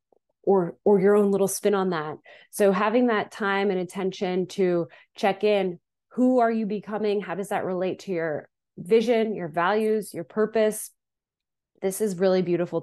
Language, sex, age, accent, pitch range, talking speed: English, female, 20-39, American, 165-200 Hz, 170 wpm